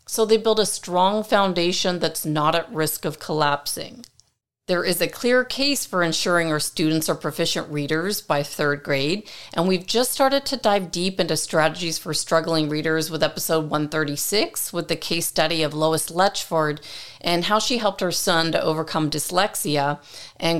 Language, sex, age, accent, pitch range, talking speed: English, female, 40-59, American, 155-195 Hz, 170 wpm